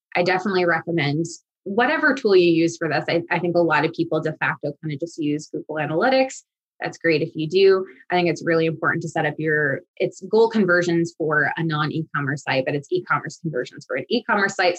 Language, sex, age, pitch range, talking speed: English, female, 20-39, 155-180 Hz, 215 wpm